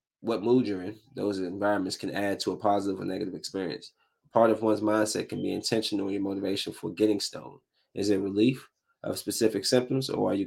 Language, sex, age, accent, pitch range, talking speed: English, male, 20-39, American, 105-140 Hz, 205 wpm